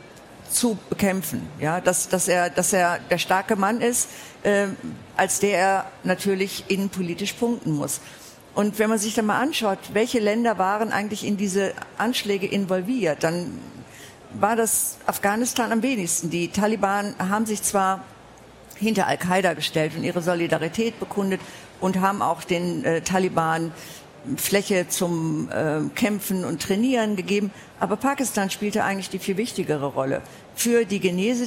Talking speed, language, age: 145 wpm, German, 50-69